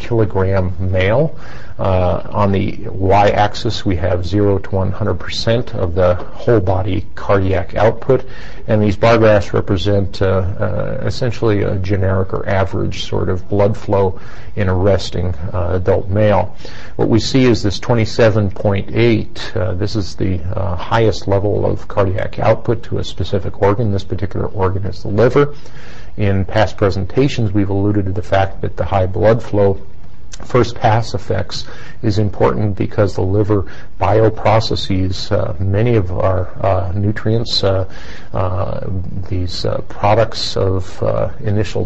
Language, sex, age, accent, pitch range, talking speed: English, male, 50-69, American, 95-110 Hz, 145 wpm